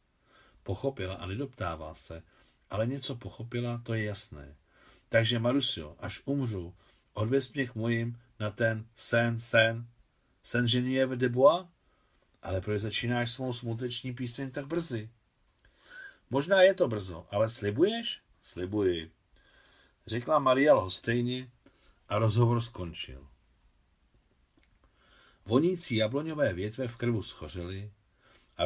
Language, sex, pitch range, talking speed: Czech, male, 95-120 Hz, 115 wpm